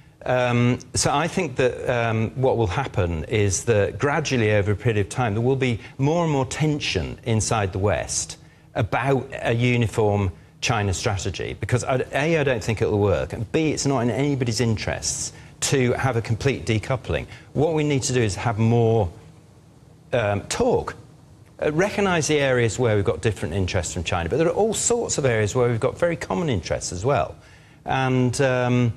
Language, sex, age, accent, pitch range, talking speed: English, male, 40-59, British, 110-145 Hz, 185 wpm